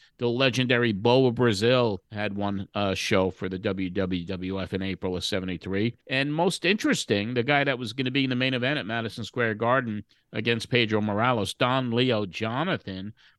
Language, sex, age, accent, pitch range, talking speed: English, male, 50-69, American, 105-130 Hz, 175 wpm